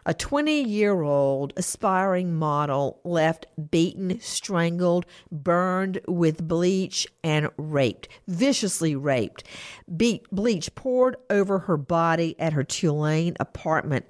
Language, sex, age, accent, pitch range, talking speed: English, female, 50-69, American, 155-195 Hz, 100 wpm